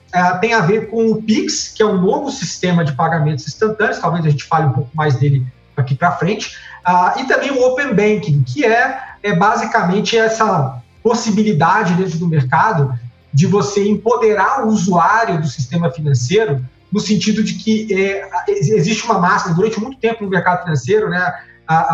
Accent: Brazilian